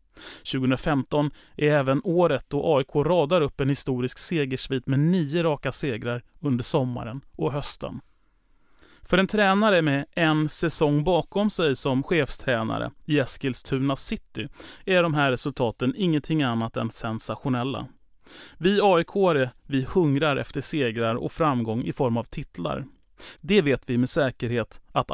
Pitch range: 130-165 Hz